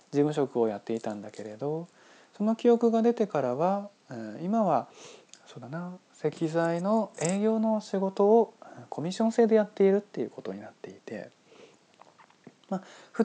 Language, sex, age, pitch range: Japanese, male, 20-39, 130-215 Hz